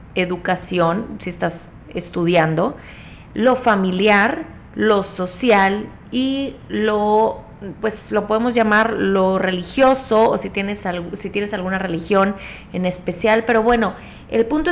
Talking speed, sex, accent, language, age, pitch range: 120 wpm, female, Mexican, Spanish, 30-49, 205-270 Hz